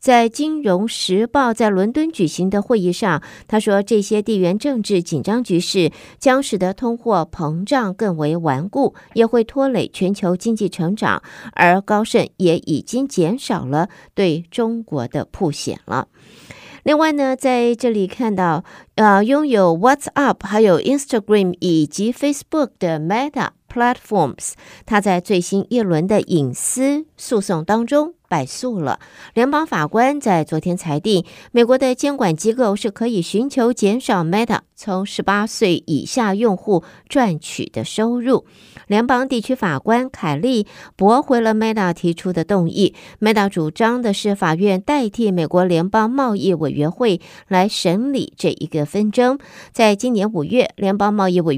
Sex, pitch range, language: female, 175-235 Hz, Chinese